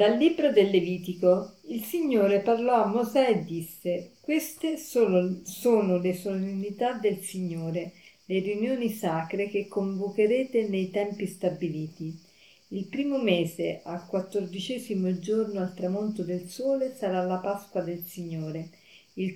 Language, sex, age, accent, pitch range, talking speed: Italian, female, 50-69, native, 180-220 Hz, 130 wpm